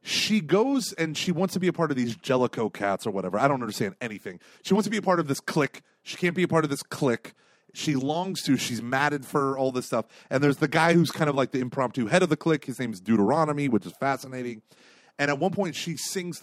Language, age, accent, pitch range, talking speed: English, 30-49, American, 130-180 Hz, 265 wpm